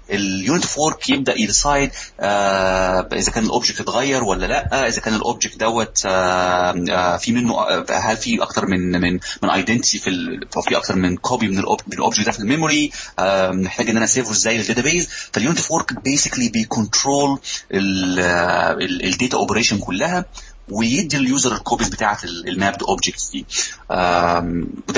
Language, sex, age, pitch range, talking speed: Arabic, male, 30-49, 95-120 Hz, 165 wpm